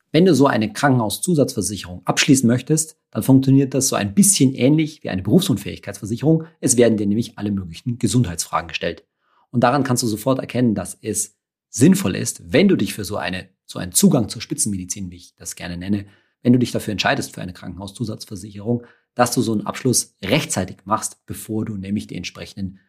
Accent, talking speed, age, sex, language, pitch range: German, 185 wpm, 40-59, male, German, 100-130 Hz